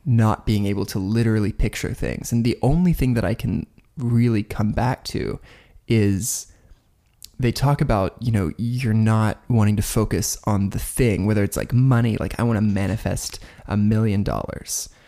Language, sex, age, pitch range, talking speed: English, male, 20-39, 105-125 Hz, 175 wpm